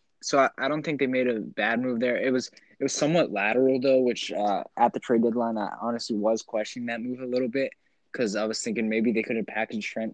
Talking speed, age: 255 wpm, 10-29